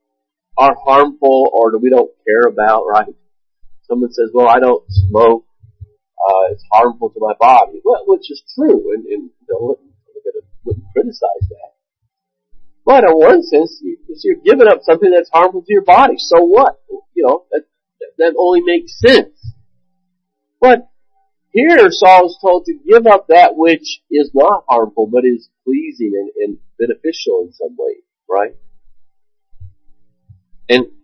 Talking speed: 155 wpm